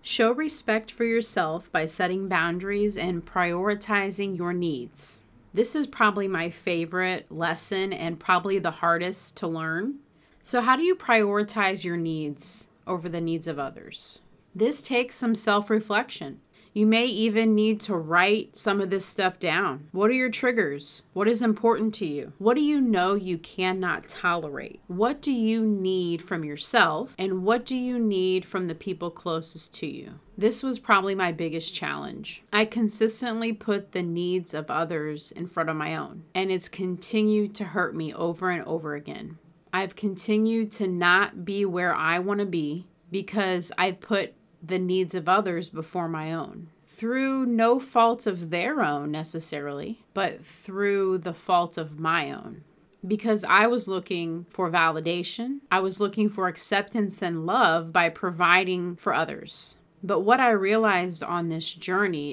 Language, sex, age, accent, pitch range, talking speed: English, female, 30-49, American, 170-215 Hz, 165 wpm